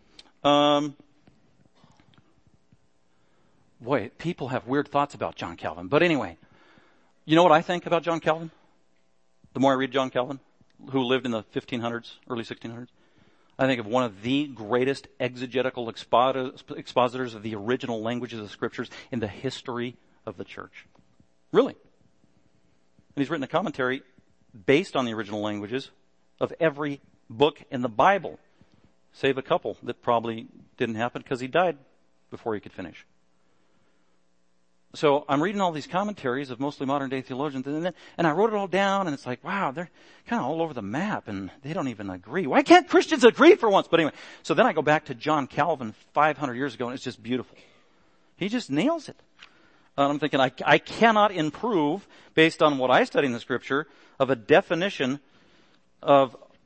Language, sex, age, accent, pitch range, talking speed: English, male, 50-69, American, 115-150 Hz, 175 wpm